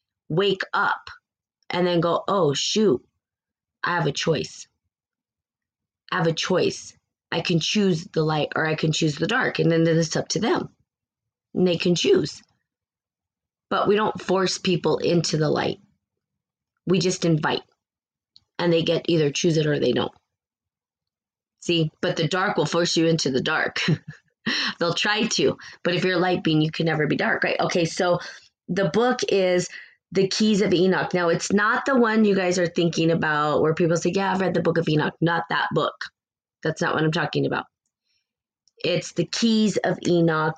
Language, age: English, 20-39